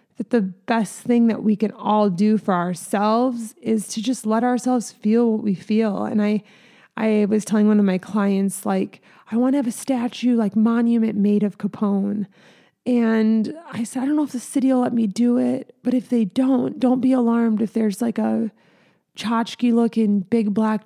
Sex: female